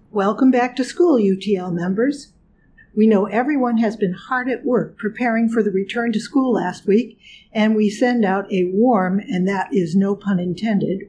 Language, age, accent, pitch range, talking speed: English, 50-69, American, 200-255 Hz, 185 wpm